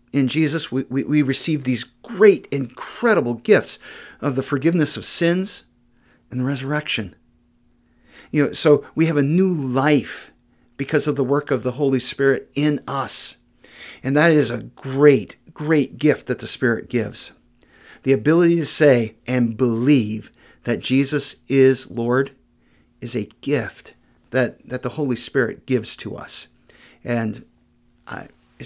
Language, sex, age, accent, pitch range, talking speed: English, male, 50-69, American, 115-145 Hz, 145 wpm